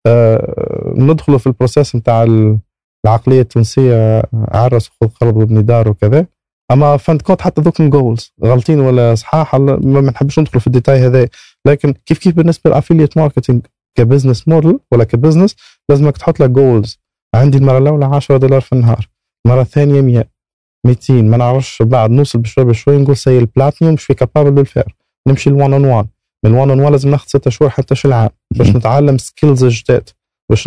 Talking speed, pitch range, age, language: 160 wpm, 115-150 Hz, 20-39, Arabic